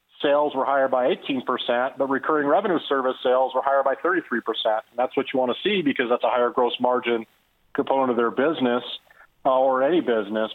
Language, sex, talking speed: English, male, 200 wpm